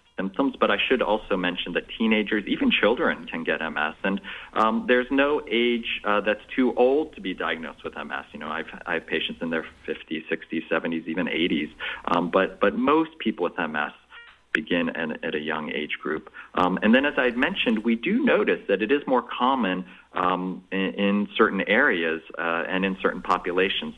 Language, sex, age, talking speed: English, male, 40-59, 195 wpm